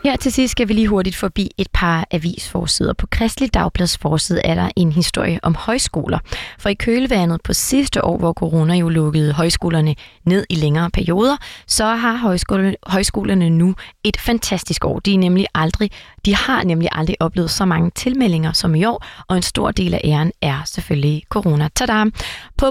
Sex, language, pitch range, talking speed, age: female, Danish, 165-210 Hz, 180 wpm, 30-49